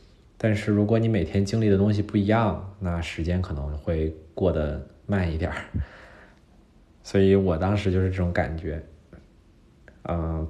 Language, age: Chinese, 20-39